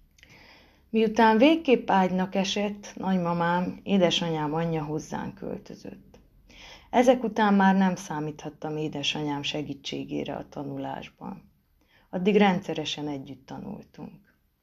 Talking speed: 90 wpm